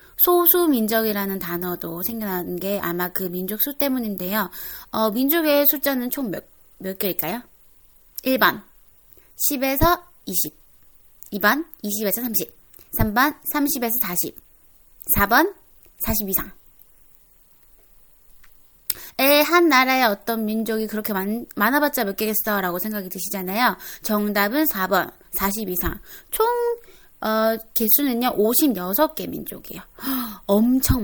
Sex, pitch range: female, 200-270 Hz